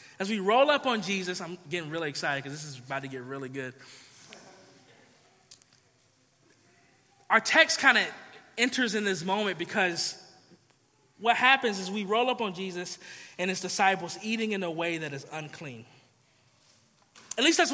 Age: 20-39